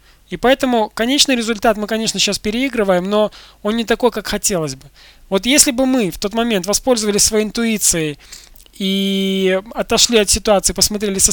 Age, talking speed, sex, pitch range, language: 20-39, 165 wpm, male, 180-230 Hz, Russian